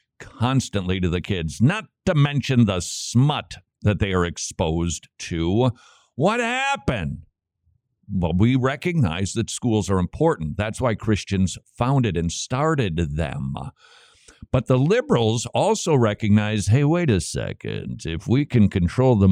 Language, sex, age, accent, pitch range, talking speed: English, male, 50-69, American, 95-130 Hz, 135 wpm